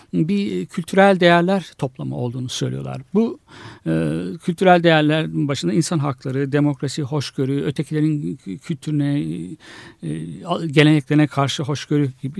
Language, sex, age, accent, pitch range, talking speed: Turkish, male, 60-79, native, 145-205 Hz, 105 wpm